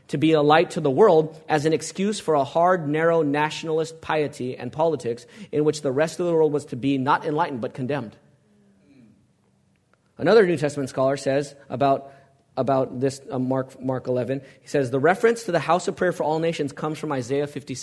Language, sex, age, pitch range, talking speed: English, male, 30-49, 140-210 Hz, 200 wpm